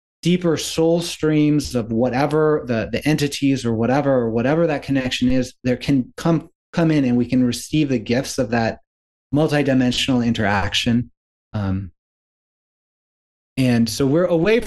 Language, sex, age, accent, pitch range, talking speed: English, male, 30-49, American, 120-150 Hz, 145 wpm